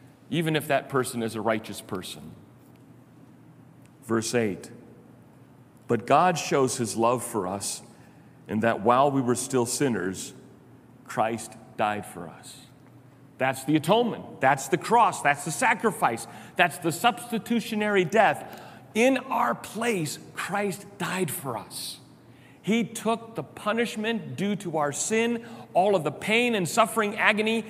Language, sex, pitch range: English, male, 135-210 Hz